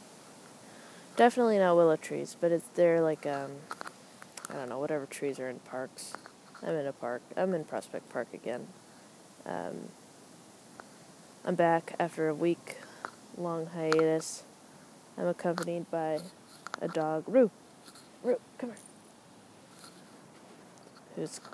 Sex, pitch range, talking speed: female, 155-205 Hz, 125 wpm